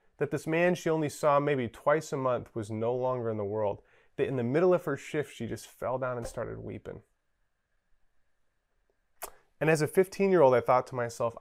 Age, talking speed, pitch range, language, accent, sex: 30-49, 200 wpm, 115-160 Hz, English, American, male